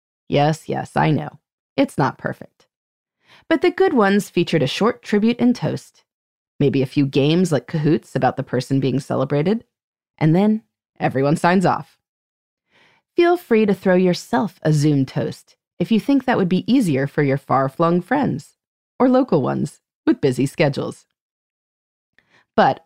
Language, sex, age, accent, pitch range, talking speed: English, female, 30-49, American, 150-245 Hz, 155 wpm